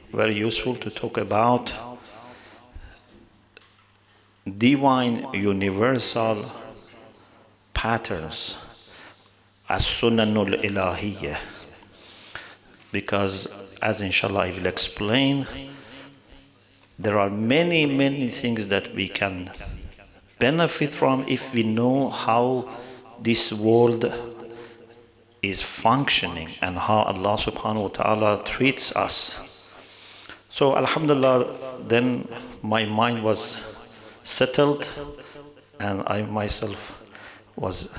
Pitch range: 100-120 Hz